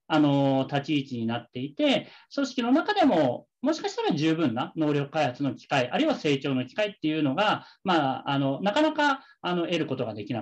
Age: 40-59